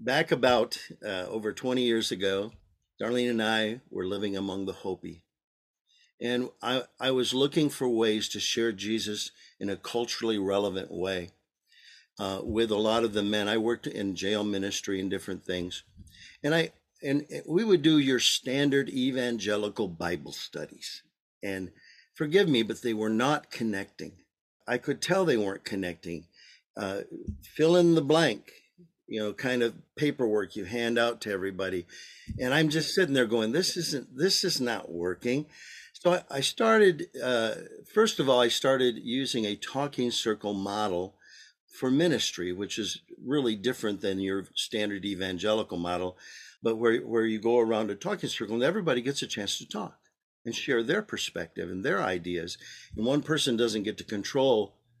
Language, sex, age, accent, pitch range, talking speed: English, male, 50-69, American, 100-135 Hz, 165 wpm